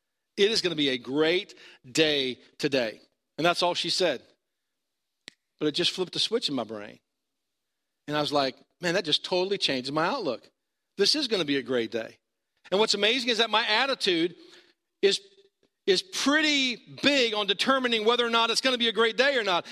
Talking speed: 205 wpm